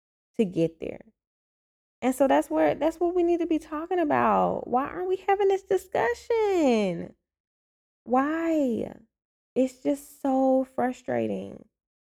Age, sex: 10-29, female